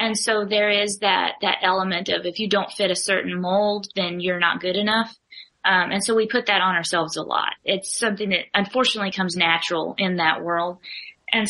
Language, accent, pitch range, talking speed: English, American, 185-220 Hz, 210 wpm